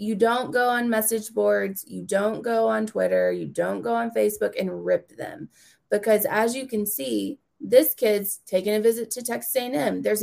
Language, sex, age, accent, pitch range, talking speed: English, female, 20-39, American, 185-235 Hz, 200 wpm